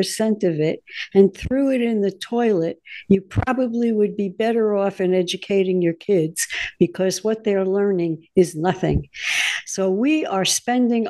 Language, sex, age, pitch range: English, female, 60-79, 175-220 Hz